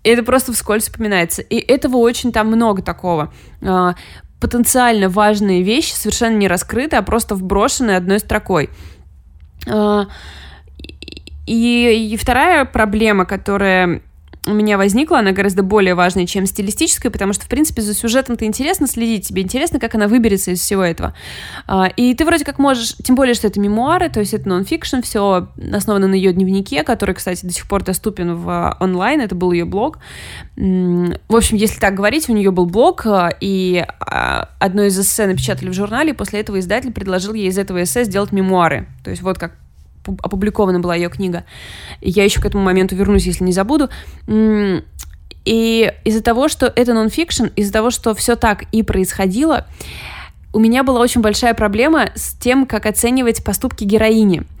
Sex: female